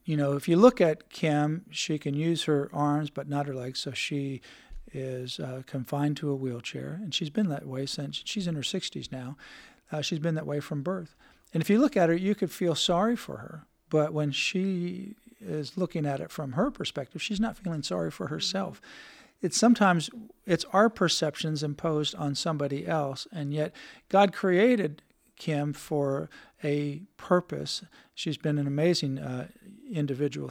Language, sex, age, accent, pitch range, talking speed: English, male, 50-69, American, 145-185 Hz, 180 wpm